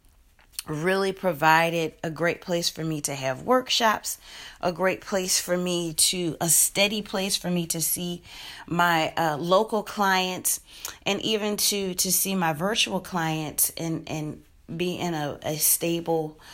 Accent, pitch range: American, 165-200 Hz